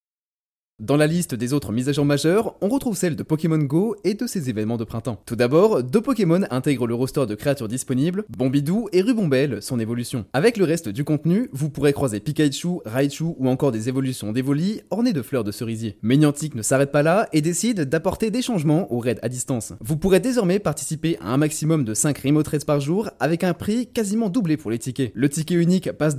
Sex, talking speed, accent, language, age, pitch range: male, 220 wpm, French, French, 20-39, 130-180 Hz